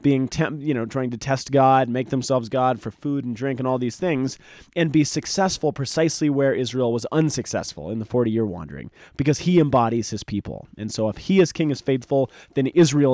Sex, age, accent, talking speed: male, 30-49, American, 215 wpm